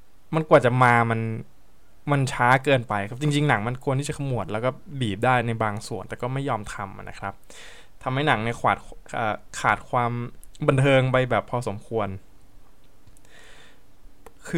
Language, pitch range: Thai, 105-140 Hz